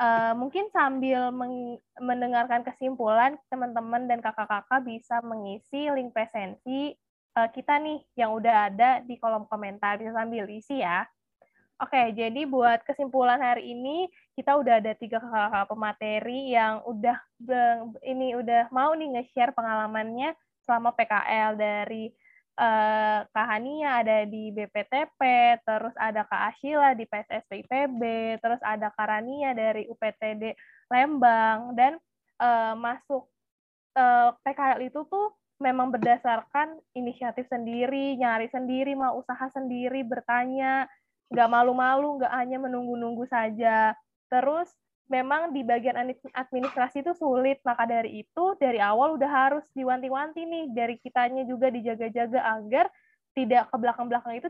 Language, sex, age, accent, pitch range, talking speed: Indonesian, female, 20-39, native, 230-265 Hz, 120 wpm